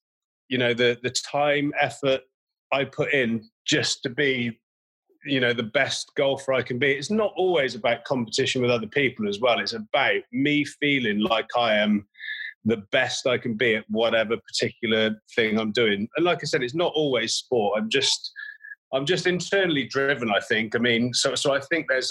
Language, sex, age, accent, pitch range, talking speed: English, male, 30-49, British, 120-160 Hz, 195 wpm